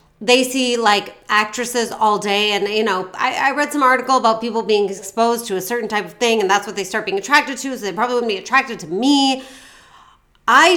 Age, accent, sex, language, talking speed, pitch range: 30-49, American, female, English, 230 wpm, 190-245 Hz